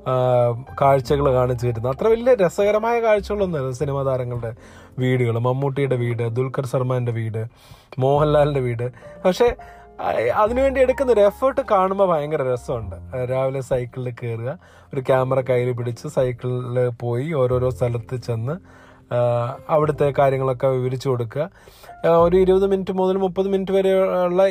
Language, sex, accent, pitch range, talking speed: Malayalam, male, native, 125-170 Hz, 115 wpm